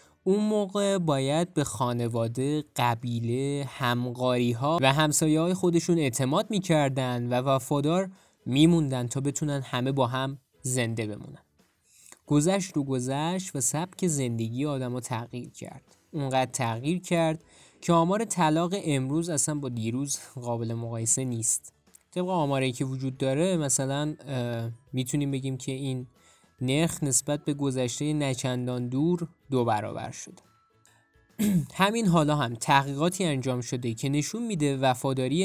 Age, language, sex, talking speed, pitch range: 20-39, Persian, male, 130 wpm, 125-155 Hz